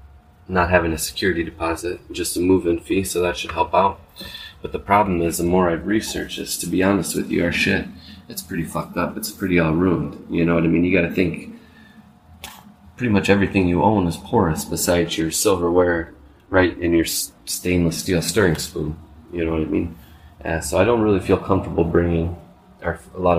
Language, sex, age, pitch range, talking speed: English, male, 20-39, 85-95 Hz, 200 wpm